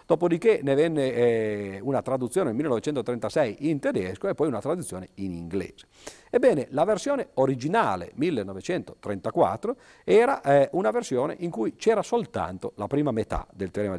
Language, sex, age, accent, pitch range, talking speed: Italian, male, 50-69, native, 95-145 Hz, 135 wpm